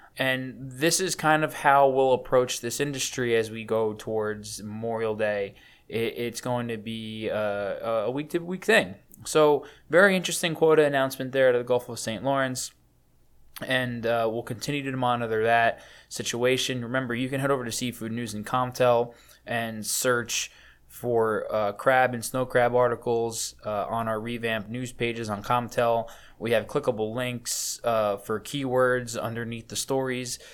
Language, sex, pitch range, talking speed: English, male, 115-135 Hz, 155 wpm